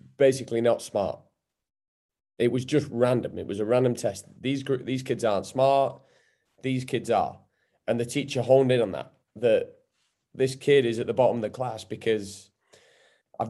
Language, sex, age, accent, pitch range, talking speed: English, male, 30-49, British, 105-130 Hz, 180 wpm